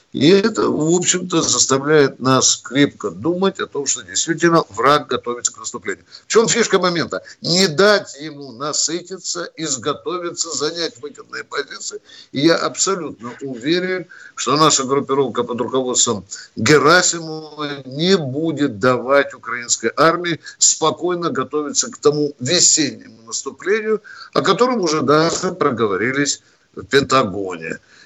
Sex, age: male, 60-79